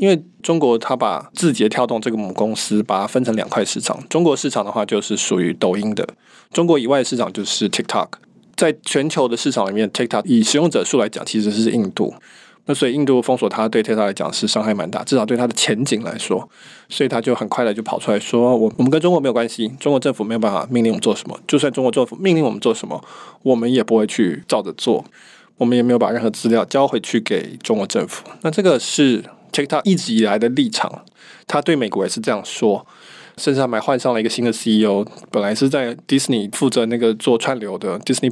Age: 20-39